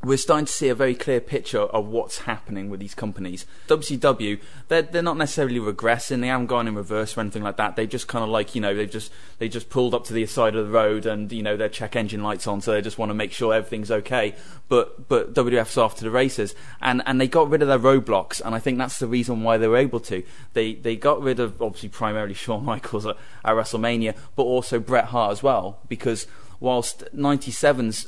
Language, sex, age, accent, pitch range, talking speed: English, male, 20-39, British, 105-130 Hz, 235 wpm